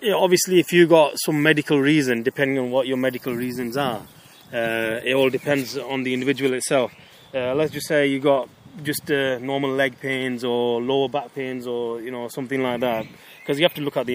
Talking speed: 215 wpm